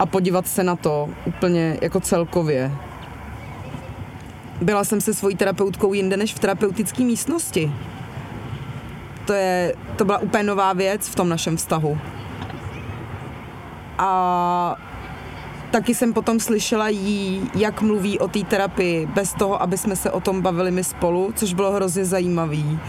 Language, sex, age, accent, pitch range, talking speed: Czech, female, 30-49, native, 165-205 Hz, 140 wpm